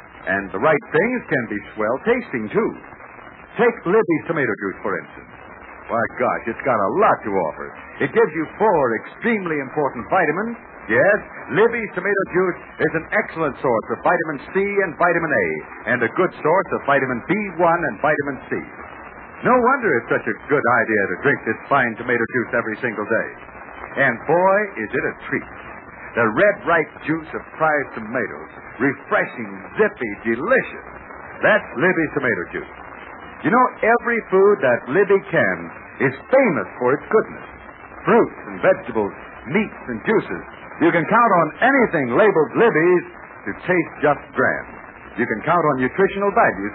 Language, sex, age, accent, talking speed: English, male, 60-79, American, 160 wpm